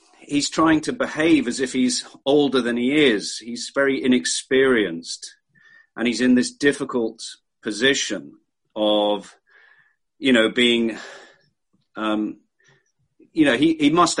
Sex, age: male, 40-59